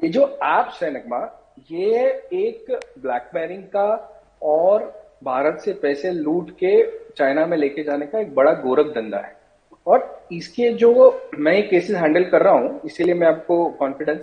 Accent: Indian